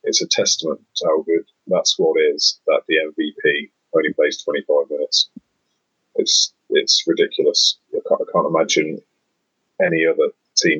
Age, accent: 30-49, British